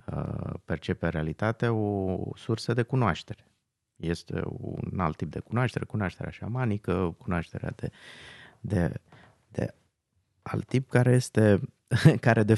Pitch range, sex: 95-120 Hz, male